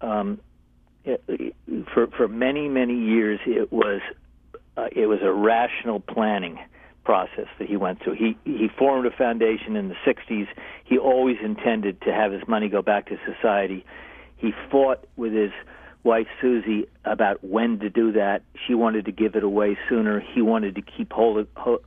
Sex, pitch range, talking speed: male, 105-125 Hz, 175 wpm